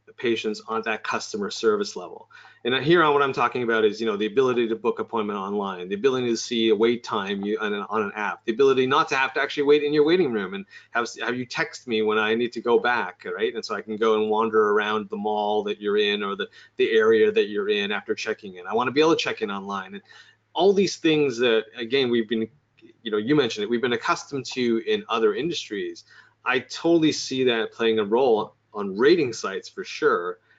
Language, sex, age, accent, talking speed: English, male, 30-49, American, 240 wpm